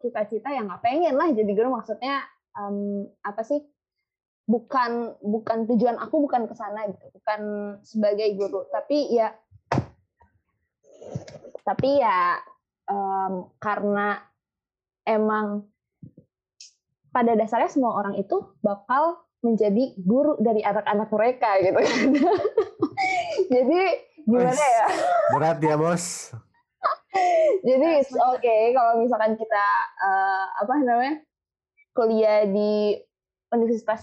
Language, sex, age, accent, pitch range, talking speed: Indonesian, female, 20-39, native, 210-280 Hz, 100 wpm